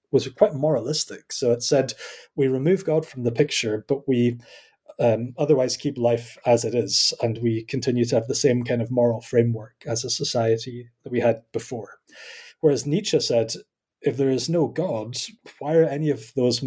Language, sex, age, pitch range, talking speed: English, male, 30-49, 115-145 Hz, 185 wpm